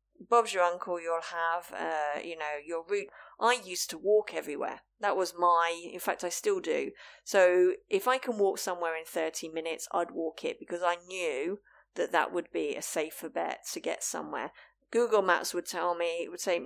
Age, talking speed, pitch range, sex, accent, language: 30-49, 200 wpm, 170-250 Hz, female, British, English